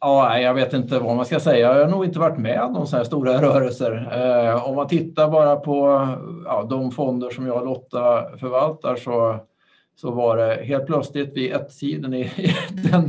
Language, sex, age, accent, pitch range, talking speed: Swedish, male, 50-69, Norwegian, 120-150 Hz, 175 wpm